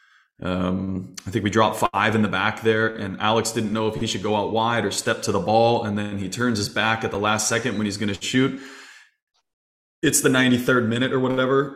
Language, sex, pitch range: English, male, 105-120 Hz